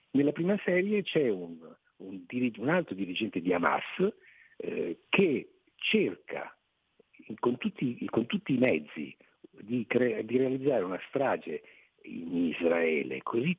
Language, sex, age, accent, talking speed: Italian, male, 50-69, native, 125 wpm